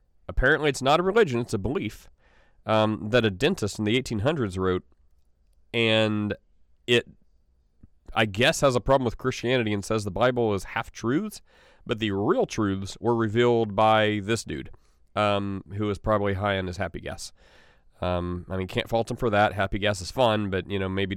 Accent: American